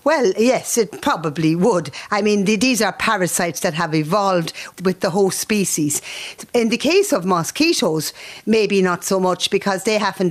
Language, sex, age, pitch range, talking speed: English, female, 50-69, 165-205 Hz, 170 wpm